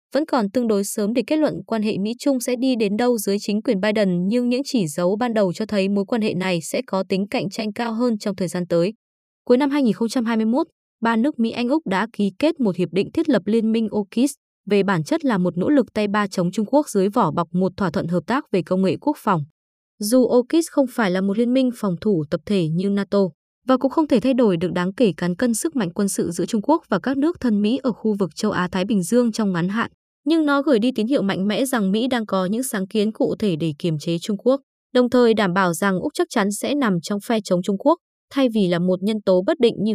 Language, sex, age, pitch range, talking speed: Vietnamese, female, 20-39, 190-250 Hz, 270 wpm